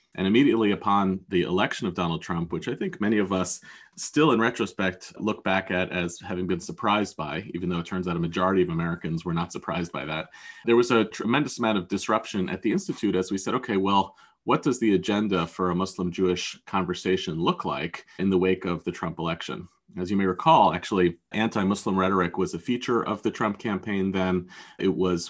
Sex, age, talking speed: male, 30-49, 210 wpm